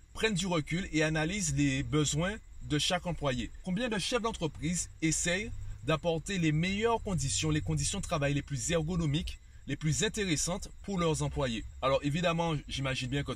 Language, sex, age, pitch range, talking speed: French, male, 30-49, 135-175 Hz, 165 wpm